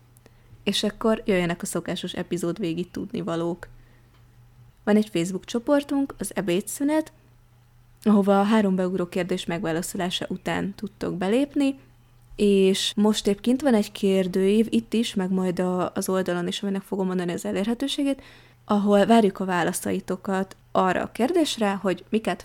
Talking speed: 135 wpm